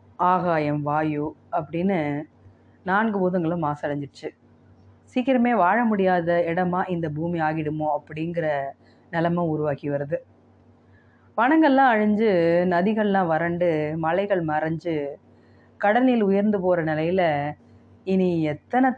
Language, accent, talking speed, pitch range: Tamil, native, 90 wpm, 145-190 Hz